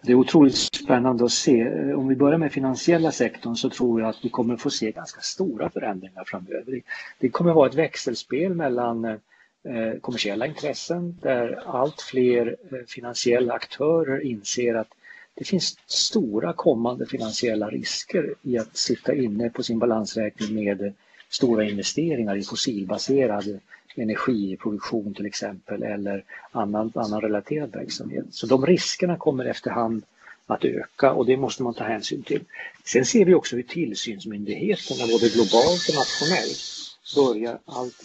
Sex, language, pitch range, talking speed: male, English, 110-135 Hz, 145 wpm